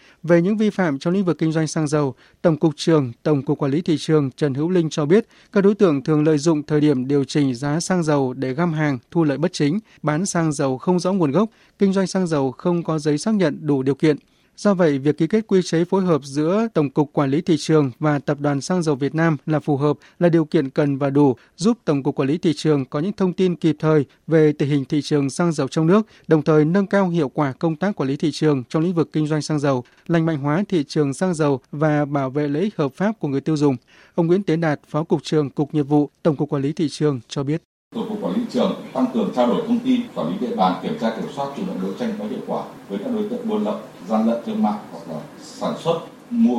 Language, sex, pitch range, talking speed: Vietnamese, male, 145-195 Hz, 275 wpm